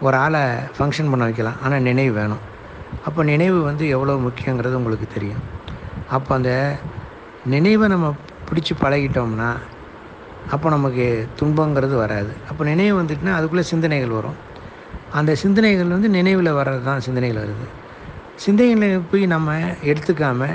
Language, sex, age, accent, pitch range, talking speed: Tamil, male, 60-79, native, 125-160 Hz, 125 wpm